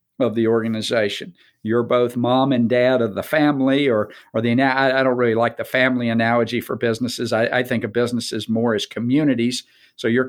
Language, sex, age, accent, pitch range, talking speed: English, male, 50-69, American, 115-130 Hz, 190 wpm